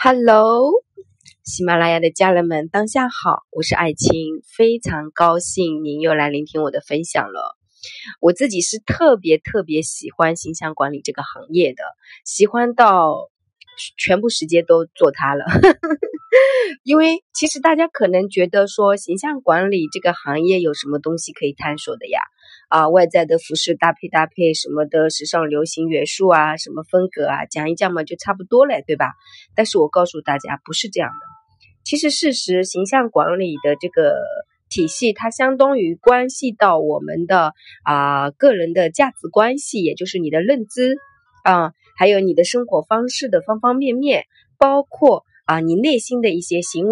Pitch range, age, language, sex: 160-265 Hz, 20-39, Chinese, female